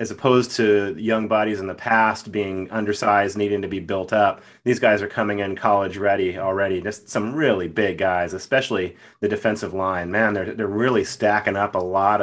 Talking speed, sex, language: 195 wpm, male, English